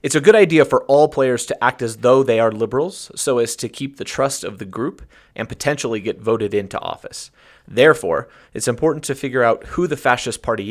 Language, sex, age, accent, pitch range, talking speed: English, male, 30-49, American, 115-150 Hz, 220 wpm